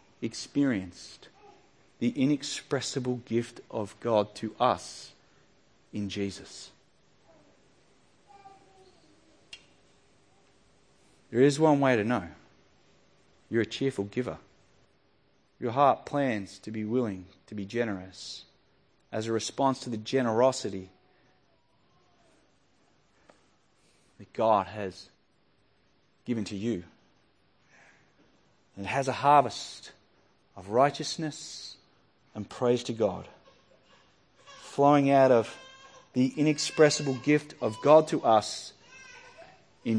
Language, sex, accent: English, male, Australian